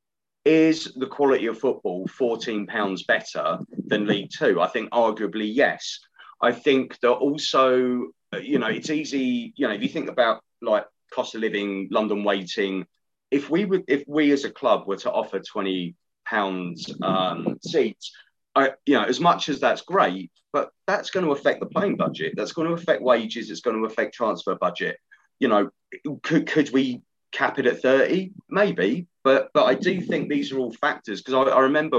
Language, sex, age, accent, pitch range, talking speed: English, male, 30-49, British, 105-145 Hz, 185 wpm